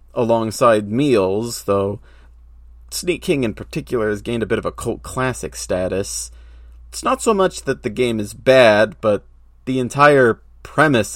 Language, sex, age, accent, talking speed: English, male, 30-49, American, 155 wpm